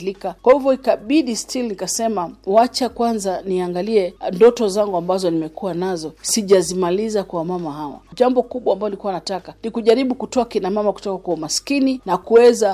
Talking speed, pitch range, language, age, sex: 150 wpm, 180-235 Hz, Swahili, 40-59, female